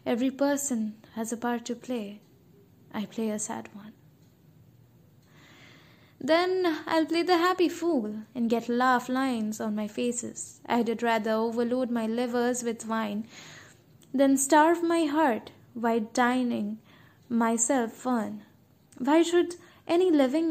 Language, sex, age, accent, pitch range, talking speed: English, female, 10-29, Indian, 225-295 Hz, 130 wpm